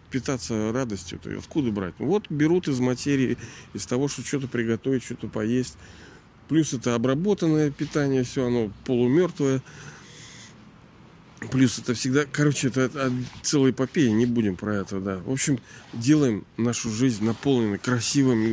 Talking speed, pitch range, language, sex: 140 wpm, 110-140 Hz, Russian, male